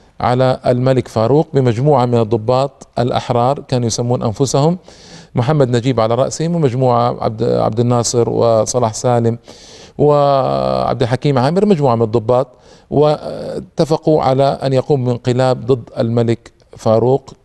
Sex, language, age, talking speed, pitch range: male, Arabic, 40-59, 115 wpm, 115-135 Hz